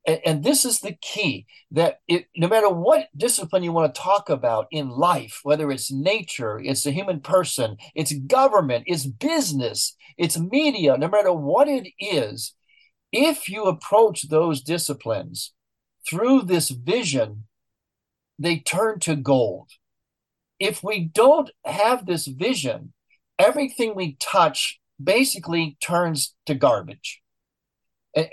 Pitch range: 150-215 Hz